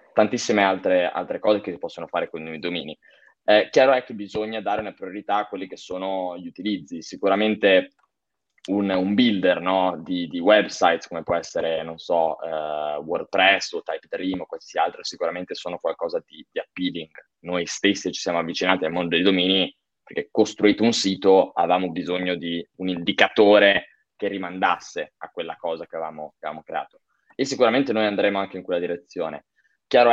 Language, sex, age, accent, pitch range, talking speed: Italian, male, 20-39, native, 90-110 Hz, 175 wpm